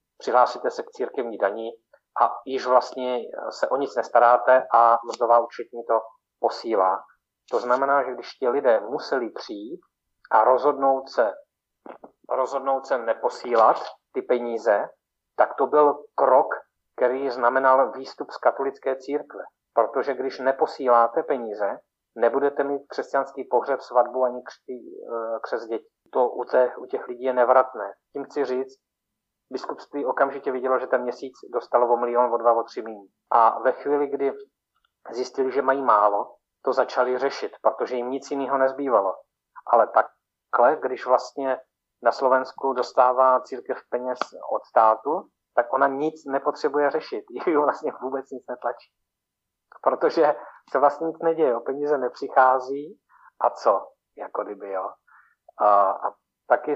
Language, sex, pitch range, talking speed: Slovak, male, 125-140 Hz, 140 wpm